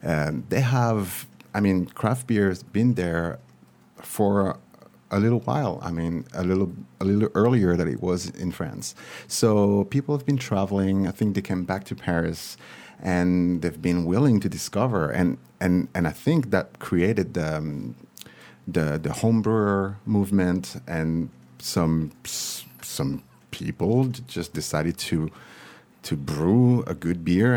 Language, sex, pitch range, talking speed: English, male, 80-100 Hz, 150 wpm